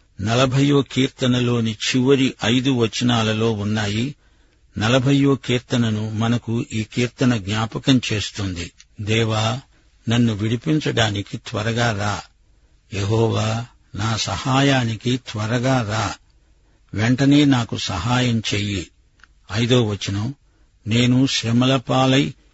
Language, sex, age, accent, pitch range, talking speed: Telugu, male, 50-69, native, 110-130 Hz, 85 wpm